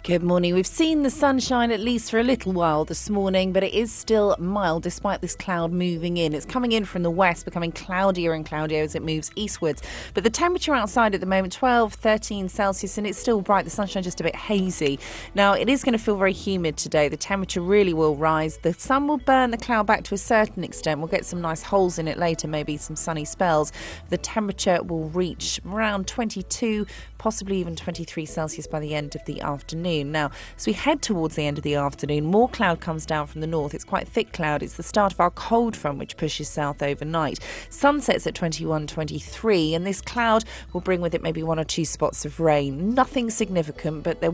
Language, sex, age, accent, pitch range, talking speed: English, female, 30-49, British, 155-205 Hz, 220 wpm